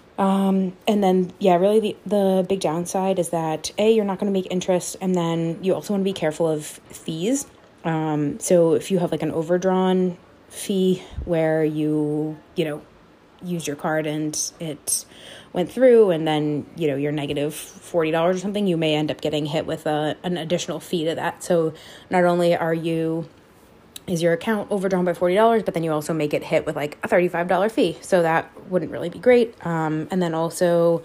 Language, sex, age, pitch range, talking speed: English, female, 20-39, 155-185 Hz, 200 wpm